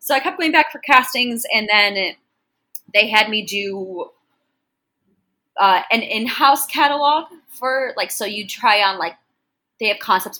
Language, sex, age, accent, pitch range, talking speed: English, female, 20-39, American, 175-250 Hz, 160 wpm